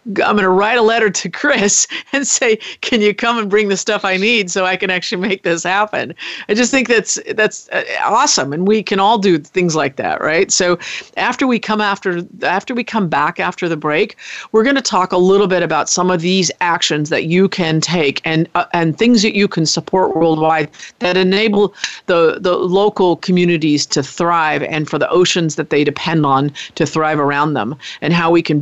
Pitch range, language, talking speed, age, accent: 160-210 Hz, English, 215 wpm, 50-69, American